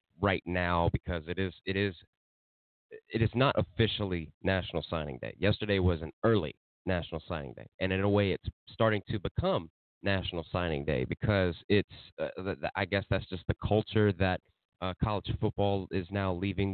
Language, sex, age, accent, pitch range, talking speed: English, male, 30-49, American, 85-100 Hz, 170 wpm